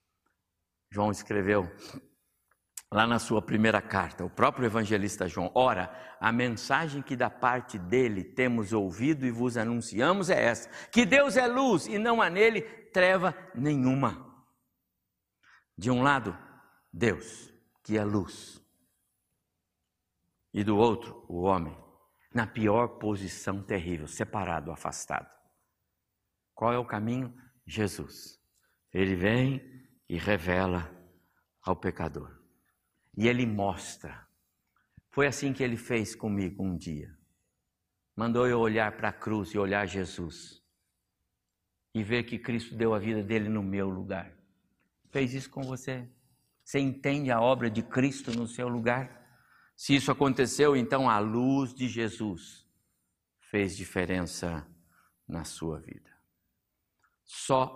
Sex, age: male, 60-79